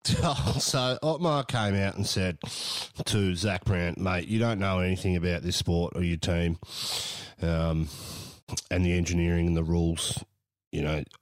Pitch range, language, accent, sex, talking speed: 90-130 Hz, English, Australian, male, 155 wpm